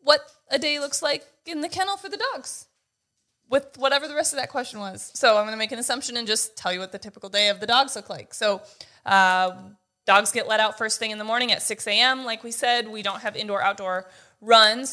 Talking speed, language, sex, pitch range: 245 wpm, English, female, 200-235 Hz